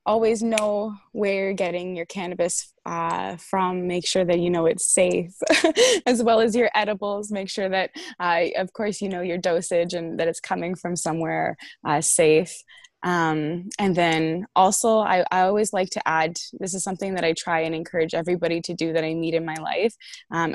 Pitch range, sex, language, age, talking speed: 165-215 Hz, female, English, 20-39, 195 wpm